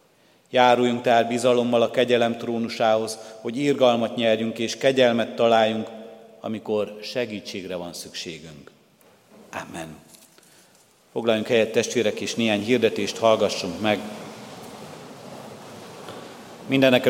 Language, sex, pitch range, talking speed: Hungarian, male, 110-120 Hz, 90 wpm